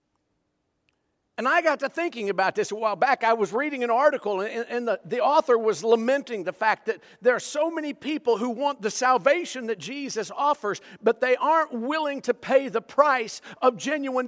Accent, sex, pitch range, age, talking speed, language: American, male, 190-280 Hz, 50-69, 195 wpm, English